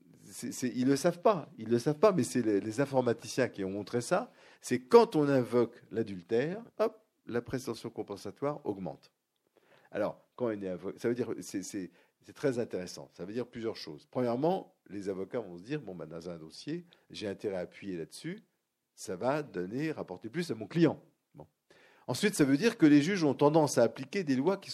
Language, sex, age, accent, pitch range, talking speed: French, male, 50-69, French, 115-165 Hz, 200 wpm